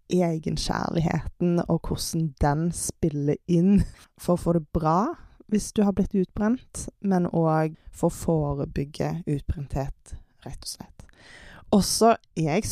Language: English